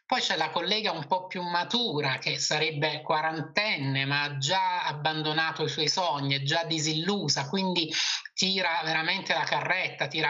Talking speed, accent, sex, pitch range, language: 155 wpm, native, male, 145-185 Hz, Italian